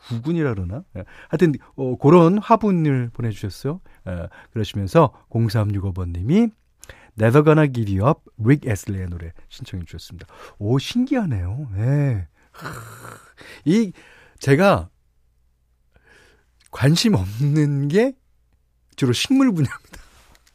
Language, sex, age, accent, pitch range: Korean, male, 40-59, native, 100-155 Hz